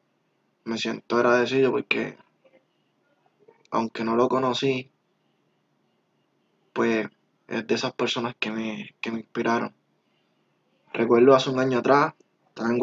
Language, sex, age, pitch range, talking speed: Spanish, male, 20-39, 115-125 Hz, 110 wpm